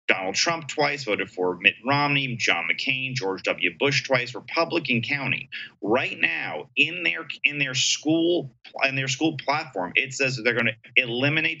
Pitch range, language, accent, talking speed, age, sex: 110-140 Hz, English, American, 160 wpm, 30-49, male